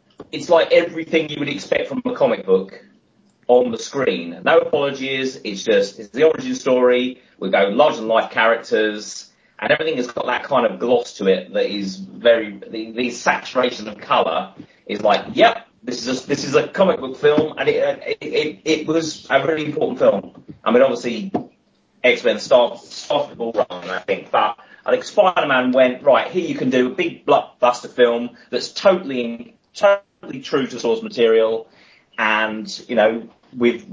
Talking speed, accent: 185 wpm, British